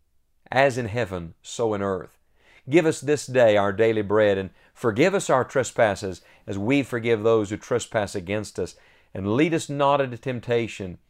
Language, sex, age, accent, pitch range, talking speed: English, male, 50-69, American, 100-125 Hz, 175 wpm